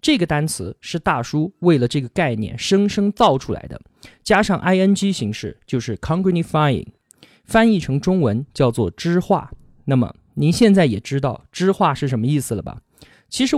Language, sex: Chinese, male